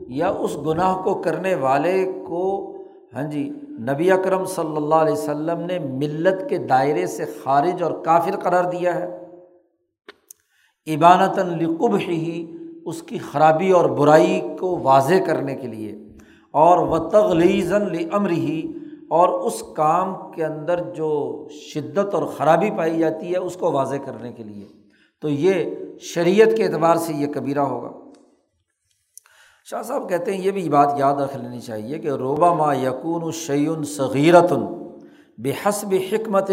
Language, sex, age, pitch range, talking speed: Urdu, male, 50-69, 150-190 Hz, 145 wpm